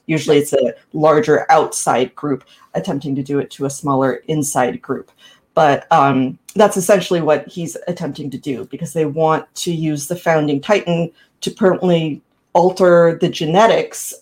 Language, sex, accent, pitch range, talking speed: English, female, American, 145-175 Hz, 155 wpm